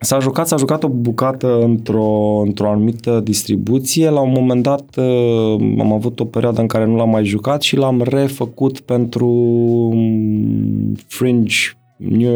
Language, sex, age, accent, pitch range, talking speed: Romanian, male, 20-39, native, 110-125 Hz, 145 wpm